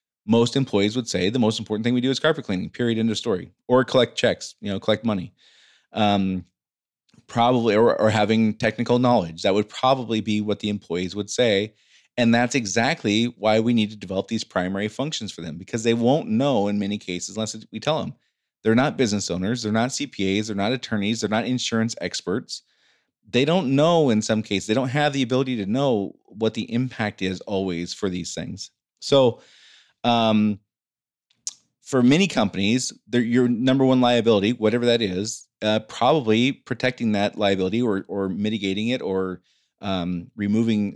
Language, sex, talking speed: English, male, 180 wpm